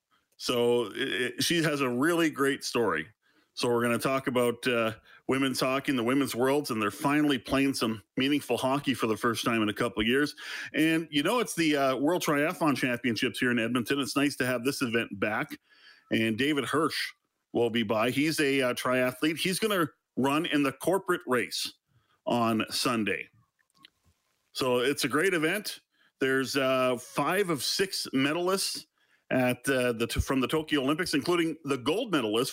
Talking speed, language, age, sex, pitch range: 180 wpm, English, 40-59, male, 120-145 Hz